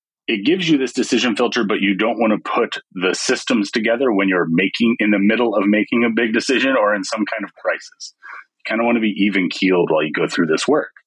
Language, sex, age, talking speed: English, male, 30-49, 250 wpm